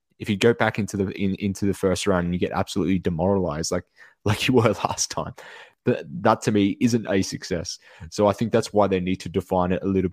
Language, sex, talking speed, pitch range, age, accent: English, male, 245 wpm, 90-105 Hz, 20-39, Australian